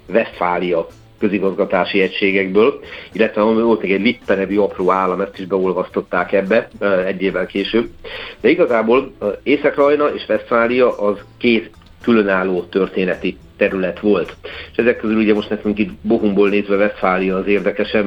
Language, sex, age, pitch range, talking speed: Hungarian, male, 50-69, 95-110 Hz, 135 wpm